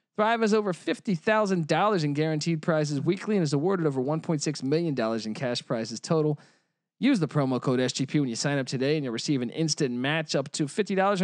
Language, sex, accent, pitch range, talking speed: English, male, American, 140-185 Hz, 200 wpm